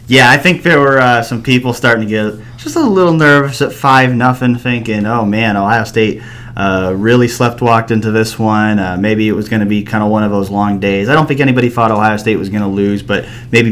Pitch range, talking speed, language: 100-120 Hz, 245 wpm, English